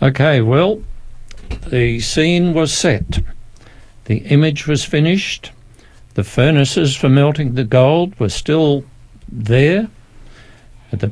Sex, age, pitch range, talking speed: male, 60-79, 115-145 Hz, 110 wpm